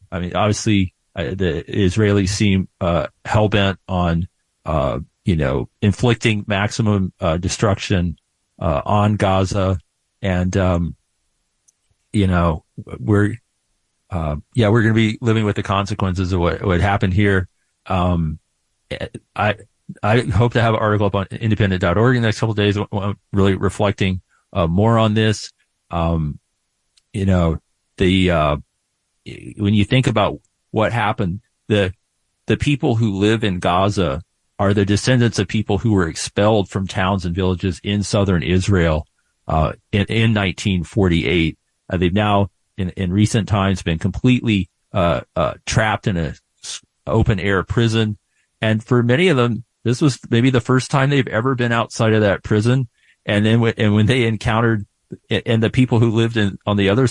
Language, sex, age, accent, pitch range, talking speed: English, male, 40-59, American, 95-110 Hz, 160 wpm